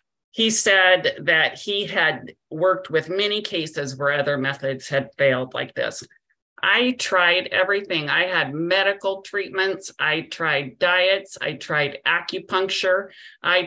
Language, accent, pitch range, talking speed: English, American, 140-185 Hz, 130 wpm